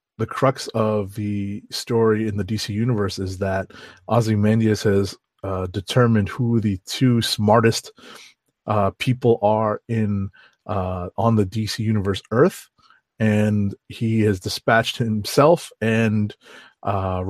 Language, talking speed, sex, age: English, 125 wpm, male, 30-49